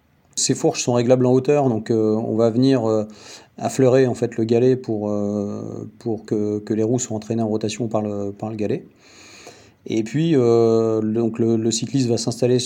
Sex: male